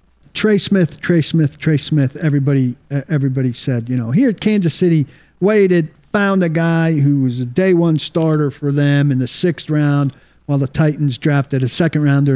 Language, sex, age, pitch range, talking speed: English, male, 50-69, 130-165 Hz, 185 wpm